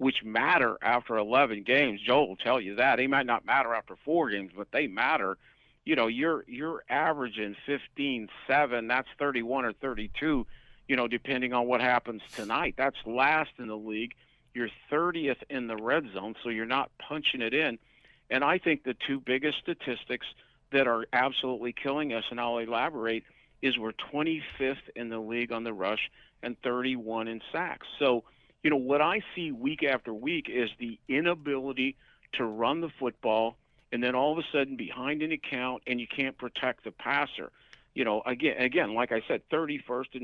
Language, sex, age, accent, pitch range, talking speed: English, male, 50-69, American, 115-145 Hz, 185 wpm